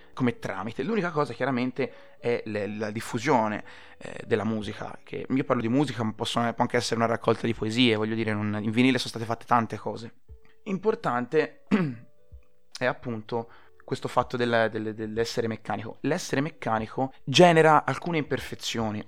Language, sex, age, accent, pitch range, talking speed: Italian, male, 20-39, native, 115-145 Hz, 155 wpm